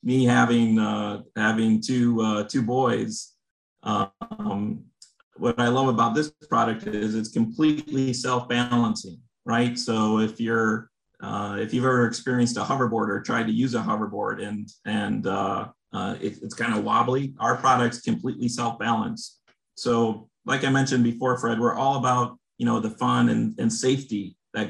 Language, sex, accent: English, male, American